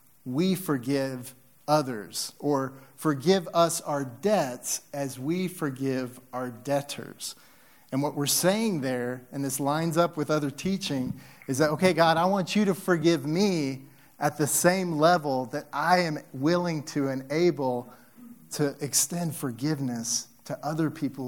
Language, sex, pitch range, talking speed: English, male, 130-155 Hz, 145 wpm